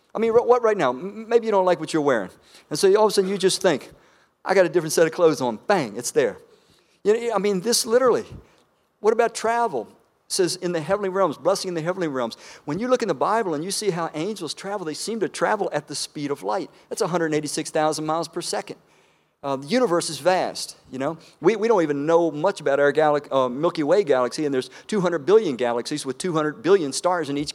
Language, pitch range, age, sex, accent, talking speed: English, 145-195 Hz, 50-69, male, American, 235 wpm